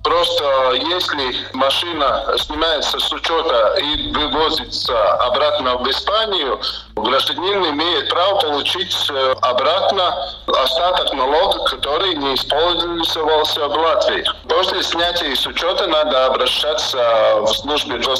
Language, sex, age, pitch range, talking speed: Russian, male, 50-69, 145-185 Hz, 100 wpm